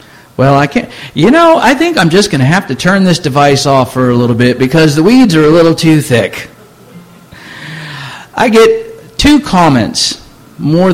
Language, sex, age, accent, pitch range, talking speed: English, male, 50-69, American, 115-155 Hz, 185 wpm